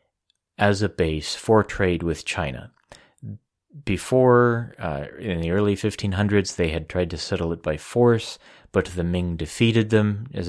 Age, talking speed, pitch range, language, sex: 30-49, 155 wpm, 80-95 Hz, English, male